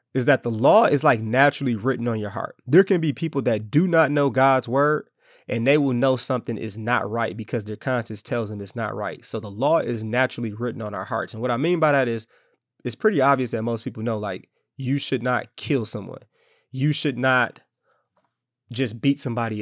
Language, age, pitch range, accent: English, 20-39, 115-140 Hz, American